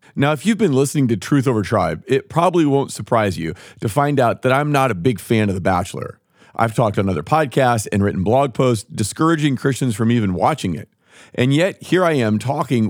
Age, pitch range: 40-59, 110-150 Hz